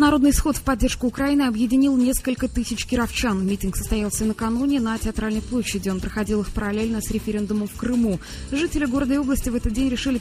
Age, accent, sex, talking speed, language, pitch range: 20-39, native, female, 180 wpm, Russian, 195-260 Hz